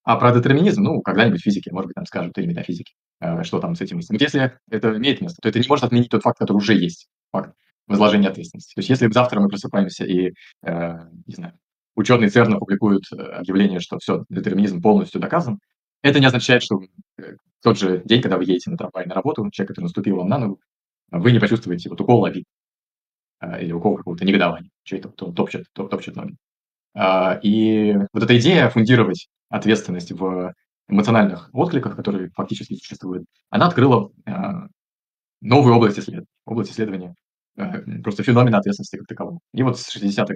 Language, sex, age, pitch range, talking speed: Russian, male, 20-39, 95-120 Hz, 185 wpm